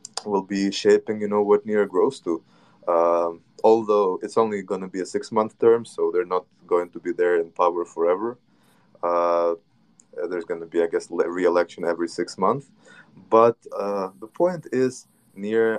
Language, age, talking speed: English, 20-39, 175 wpm